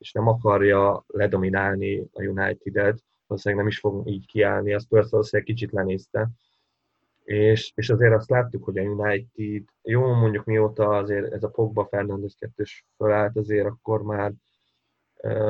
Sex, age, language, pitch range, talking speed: male, 20-39, Hungarian, 100-115 Hz, 150 wpm